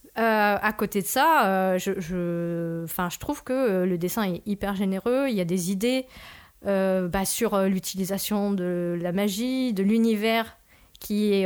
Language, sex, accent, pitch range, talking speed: French, female, French, 200-245 Hz, 185 wpm